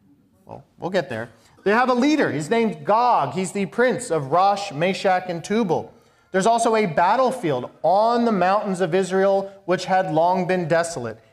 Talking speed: 175 wpm